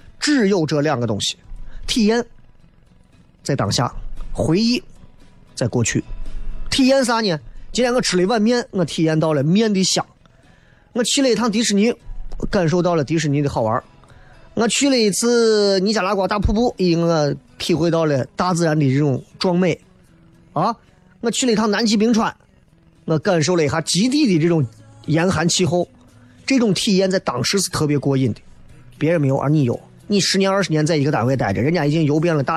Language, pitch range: Chinese, 145-210 Hz